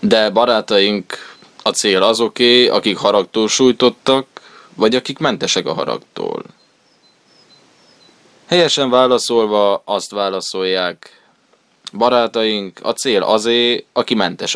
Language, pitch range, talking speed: Hungarian, 100-115 Hz, 95 wpm